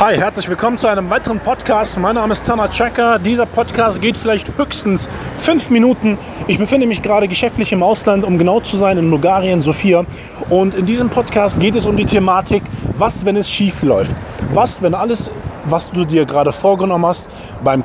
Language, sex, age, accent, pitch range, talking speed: German, male, 30-49, German, 155-210 Hz, 190 wpm